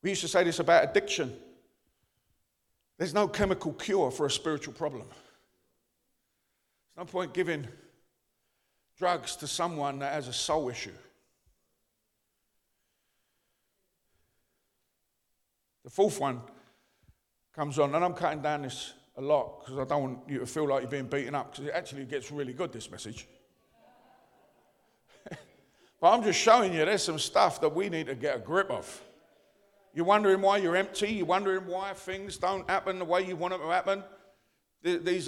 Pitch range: 135-195 Hz